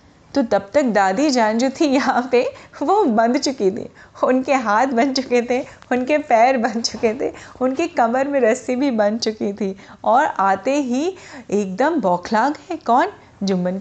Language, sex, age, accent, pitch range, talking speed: Hindi, female, 30-49, native, 205-285 Hz, 170 wpm